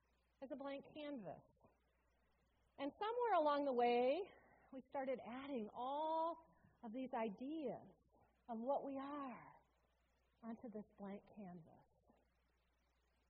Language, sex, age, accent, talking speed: English, female, 40-59, American, 110 wpm